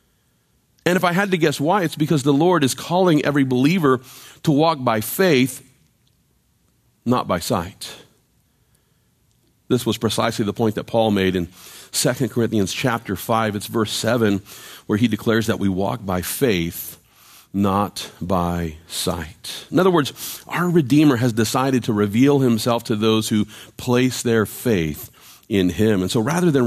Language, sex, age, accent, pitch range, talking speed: English, male, 40-59, American, 105-150 Hz, 160 wpm